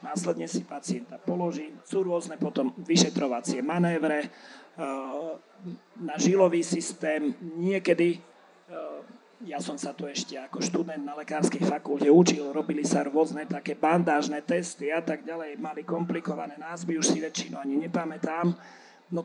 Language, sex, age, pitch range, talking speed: Slovak, male, 40-59, 150-185 Hz, 130 wpm